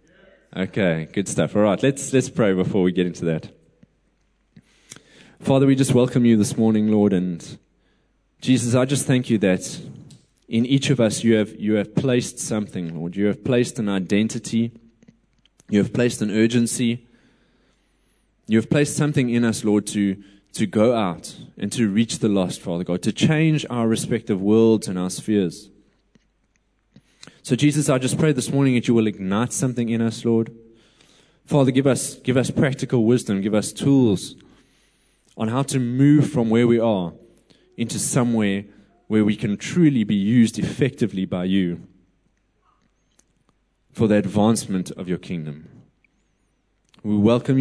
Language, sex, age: English, male, 20-39